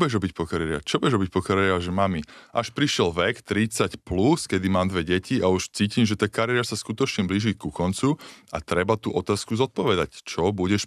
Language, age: English, 20-39